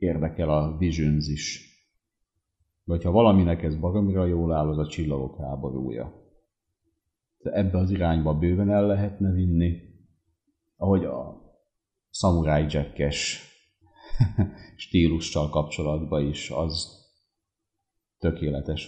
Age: 40-59